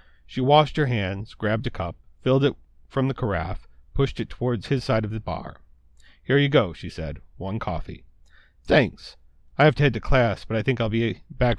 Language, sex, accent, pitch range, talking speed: English, male, American, 85-120 Hz, 205 wpm